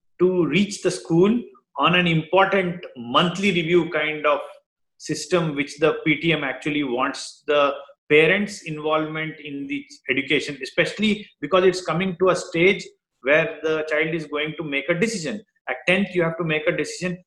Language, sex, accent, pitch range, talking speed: English, male, Indian, 150-195 Hz, 165 wpm